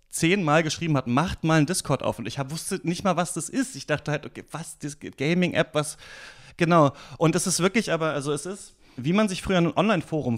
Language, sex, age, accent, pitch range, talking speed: German, male, 30-49, German, 125-160 Hz, 230 wpm